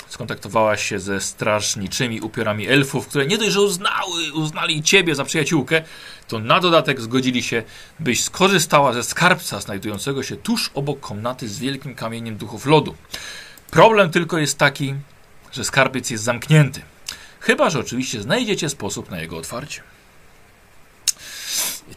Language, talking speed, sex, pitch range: Polish, 135 wpm, male, 115-160 Hz